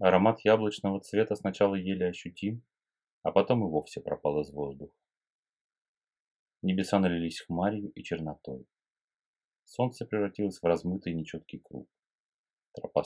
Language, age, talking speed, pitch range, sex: Russian, 30-49, 115 wpm, 85-105 Hz, male